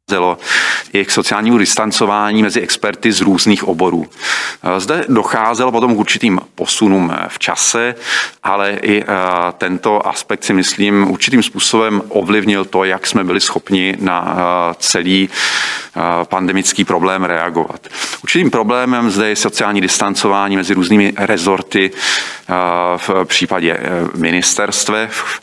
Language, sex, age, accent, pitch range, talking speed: Czech, male, 40-59, native, 90-105 Hz, 115 wpm